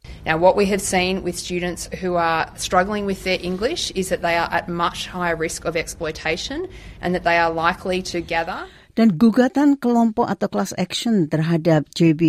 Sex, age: female, 40-59